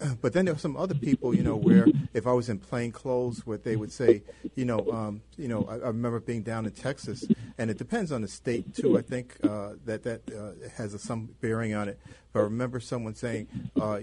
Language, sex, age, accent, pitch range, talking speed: English, male, 40-59, American, 110-130 Hz, 245 wpm